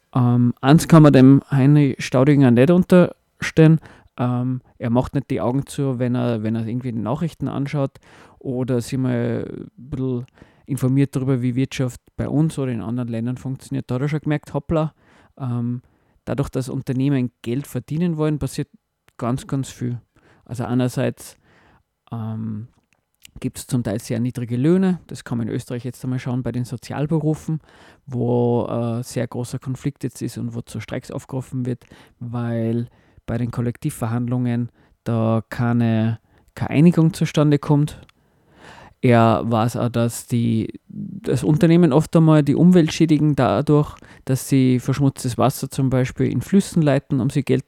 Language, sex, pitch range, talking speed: German, male, 120-145 Hz, 155 wpm